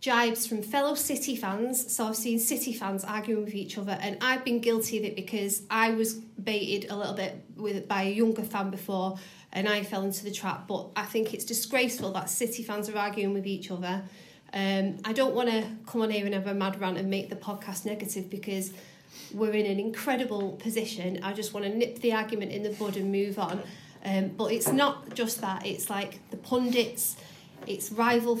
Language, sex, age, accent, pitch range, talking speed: English, female, 30-49, British, 195-235 Hz, 210 wpm